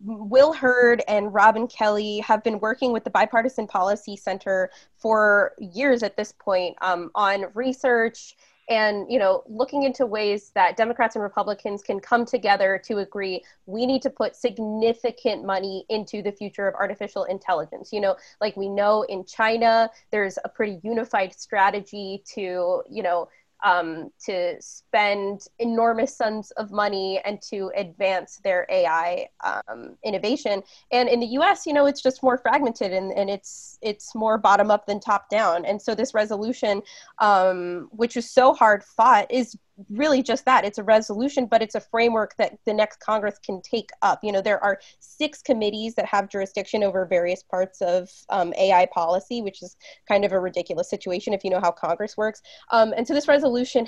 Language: English